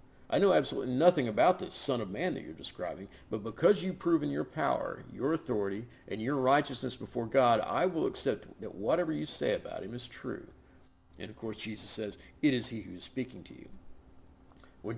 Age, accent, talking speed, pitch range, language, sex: 50-69, American, 200 wpm, 90-135 Hz, English, male